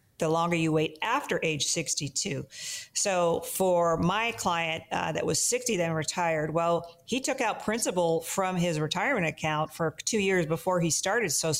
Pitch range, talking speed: 155-190 Hz, 170 wpm